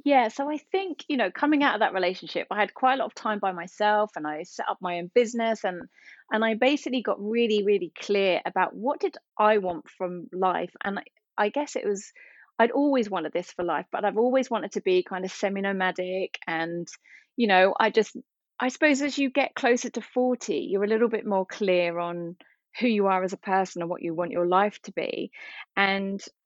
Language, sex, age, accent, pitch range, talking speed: English, female, 30-49, British, 185-250 Hz, 220 wpm